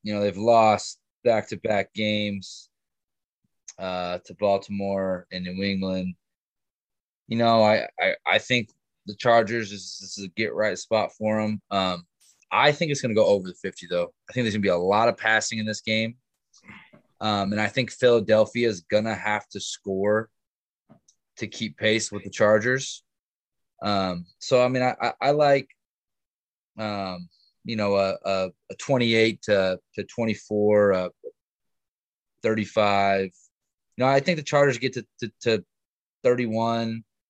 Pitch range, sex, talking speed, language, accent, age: 95-115 Hz, male, 160 wpm, English, American, 20-39